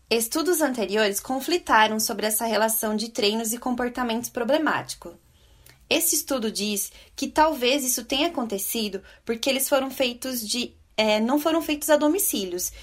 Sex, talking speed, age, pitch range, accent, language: female, 140 wpm, 20-39, 225-280 Hz, Brazilian, Portuguese